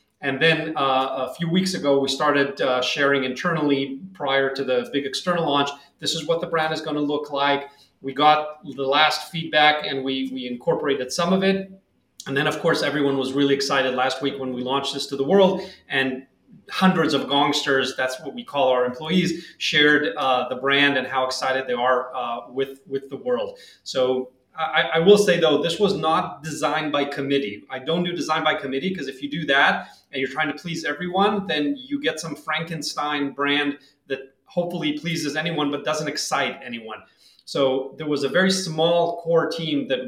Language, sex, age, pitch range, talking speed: Finnish, male, 30-49, 135-170 Hz, 200 wpm